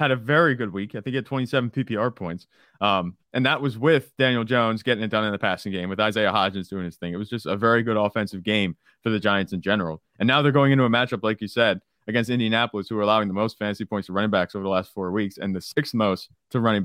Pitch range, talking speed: 100-130 Hz, 280 wpm